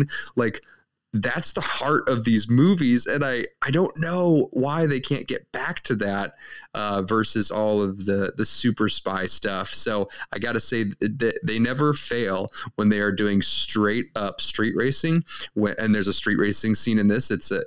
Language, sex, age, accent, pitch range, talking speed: English, male, 20-39, American, 95-120 Hz, 195 wpm